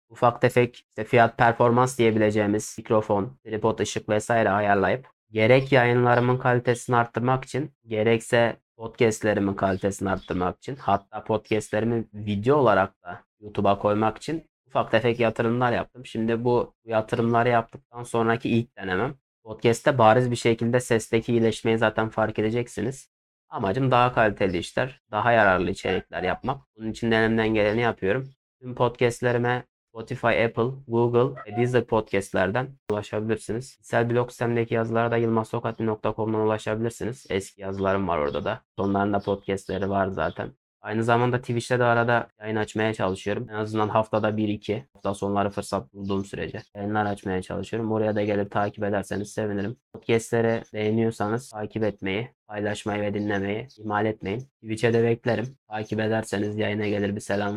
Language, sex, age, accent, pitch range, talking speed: Turkish, male, 20-39, native, 105-120 Hz, 135 wpm